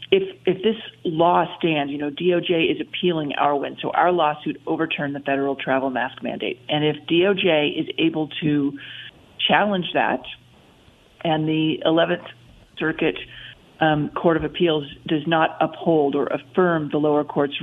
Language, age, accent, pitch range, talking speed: English, 40-59, American, 150-190 Hz, 155 wpm